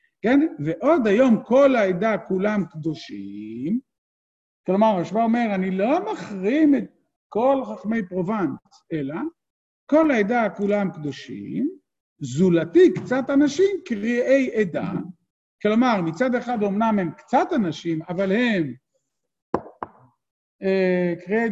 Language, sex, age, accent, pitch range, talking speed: Hebrew, male, 50-69, native, 175-250 Hz, 105 wpm